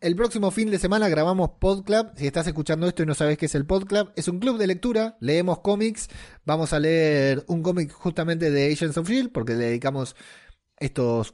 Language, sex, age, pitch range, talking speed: Spanish, male, 30-49, 130-175 Hz, 200 wpm